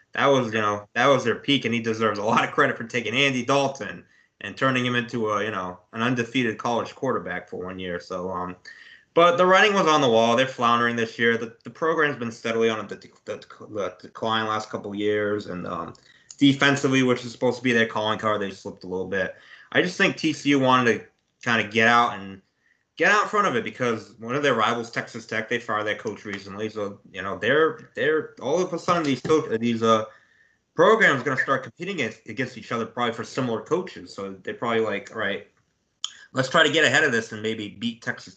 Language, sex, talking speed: English, male, 235 wpm